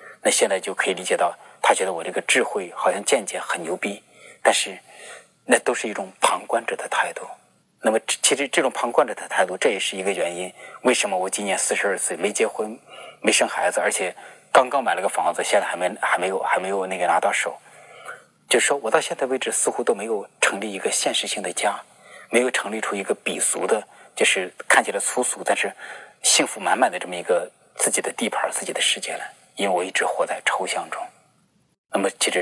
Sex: male